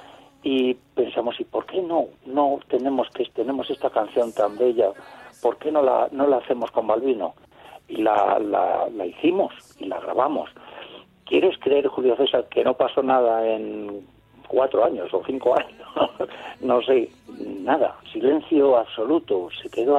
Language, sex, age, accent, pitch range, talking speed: Spanish, male, 60-79, Spanish, 120-185 Hz, 155 wpm